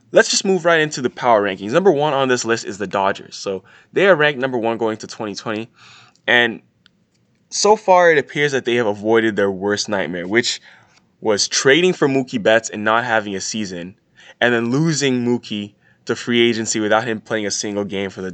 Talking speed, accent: 205 wpm, American